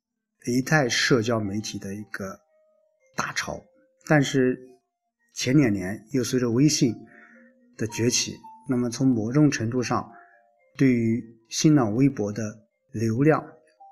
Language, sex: Chinese, male